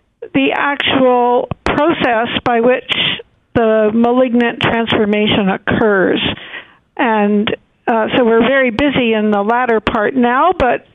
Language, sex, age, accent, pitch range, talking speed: English, female, 60-79, American, 220-265 Hz, 115 wpm